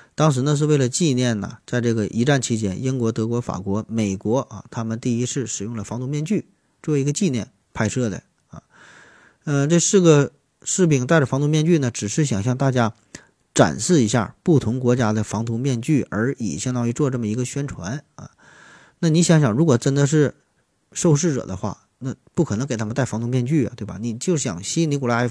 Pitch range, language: 110-145 Hz, Chinese